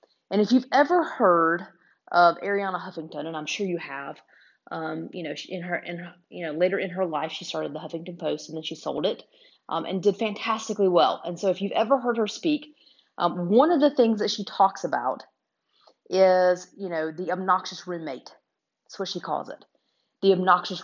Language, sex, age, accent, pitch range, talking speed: English, female, 30-49, American, 170-215 Hz, 205 wpm